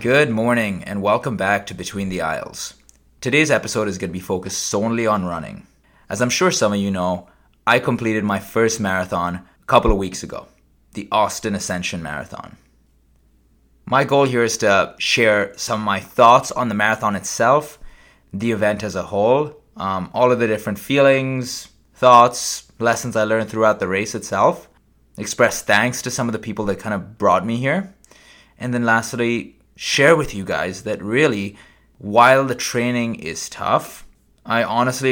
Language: English